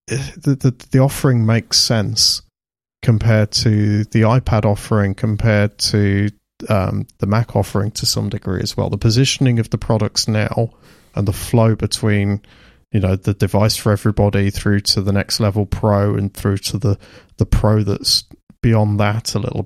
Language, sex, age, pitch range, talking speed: English, male, 30-49, 105-120 Hz, 170 wpm